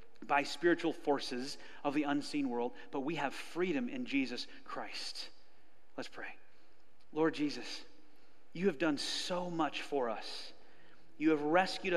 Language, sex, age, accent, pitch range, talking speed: English, male, 30-49, American, 145-185 Hz, 140 wpm